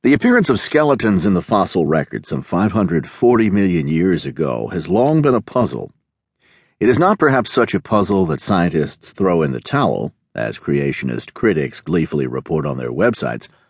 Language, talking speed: English, 170 wpm